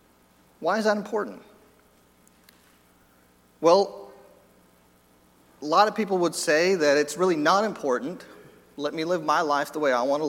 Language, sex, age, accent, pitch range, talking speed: English, male, 40-59, American, 150-205 Hz, 150 wpm